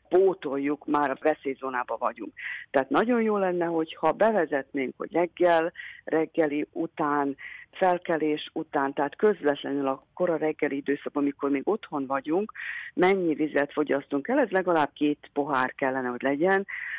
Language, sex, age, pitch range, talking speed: Hungarian, female, 50-69, 145-175 Hz, 140 wpm